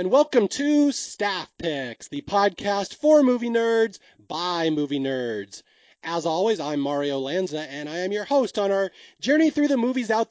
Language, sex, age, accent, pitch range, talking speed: English, male, 30-49, American, 160-220 Hz, 175 wpm